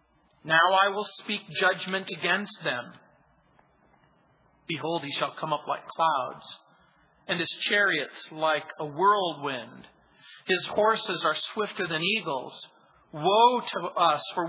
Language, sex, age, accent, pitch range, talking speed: English, male, 40-59, American, 165-210 Hz, 125 wpm